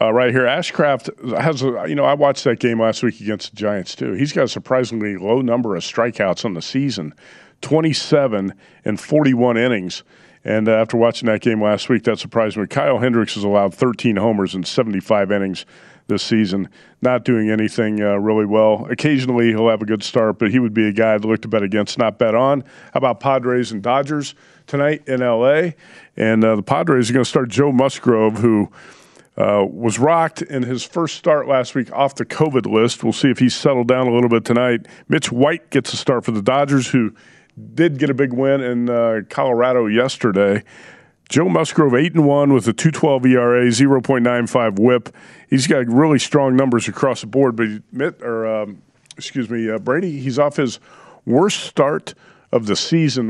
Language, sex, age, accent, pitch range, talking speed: English, male, 50-69, American, 110-135 Hz, 195 wpm